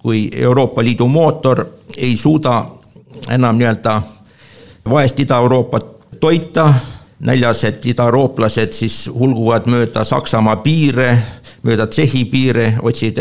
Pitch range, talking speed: 115-135 Hz, 105 wpm